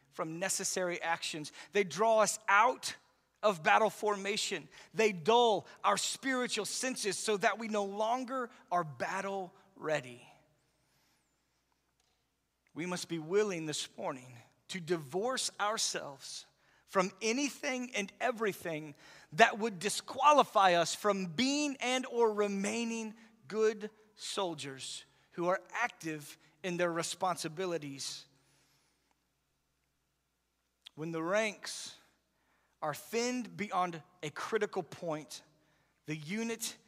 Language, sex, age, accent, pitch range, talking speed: English, male, 40-59, American, 165-220 Hz, 105 wpm